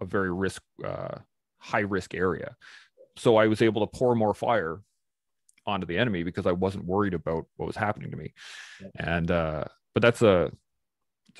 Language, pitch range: English, 90-120 Hz